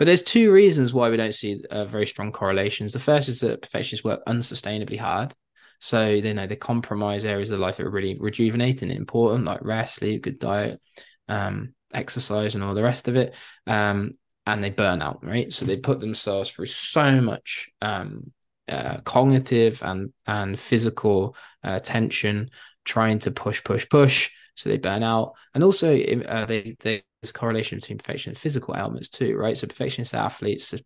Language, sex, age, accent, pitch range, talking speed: English, male, 20-39, British, 105-130 Hz, 190 wpm